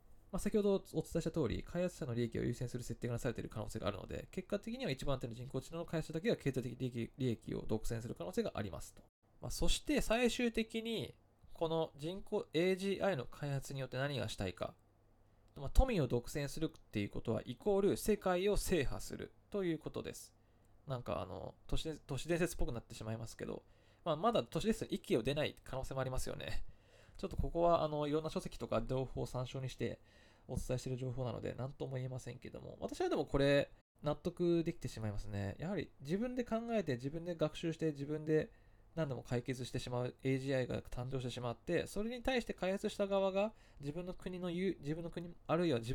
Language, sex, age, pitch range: Japanese, male, 20-39, 120-175 Hz